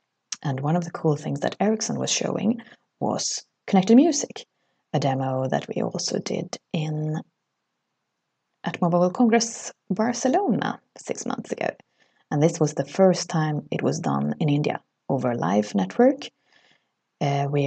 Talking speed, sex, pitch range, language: 150 wpm, female, 145-215 Hz, English